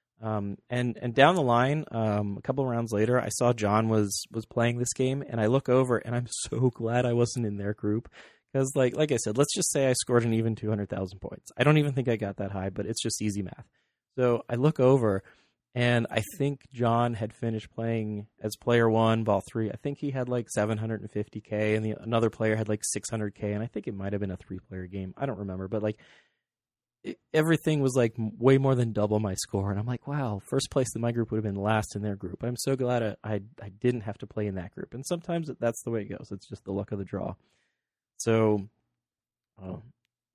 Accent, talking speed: American, 235 wpm